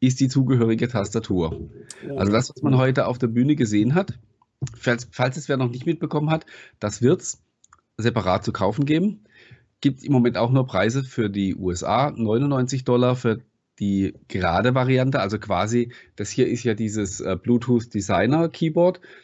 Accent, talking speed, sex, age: German, 165 wpm, male, 40-59